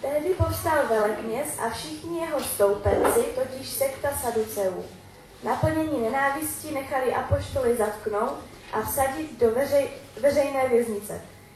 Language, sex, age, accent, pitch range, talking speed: Czech, female, 20-39, native, 205-285 Hz, 105 wpm